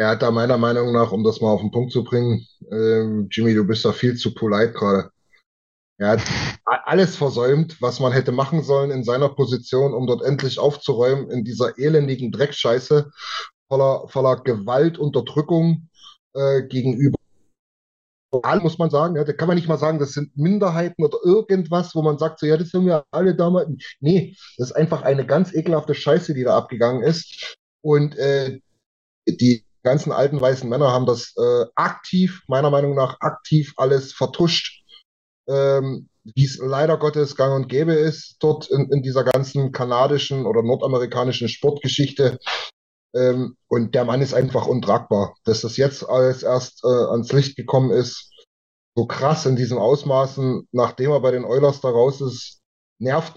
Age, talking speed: 30-49, 170 wpm